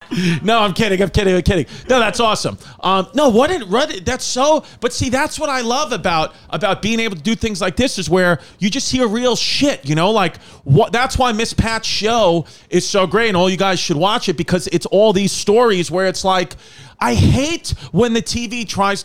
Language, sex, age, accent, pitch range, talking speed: English, male, 30-49, American, 165-200 Hz, 225 wpm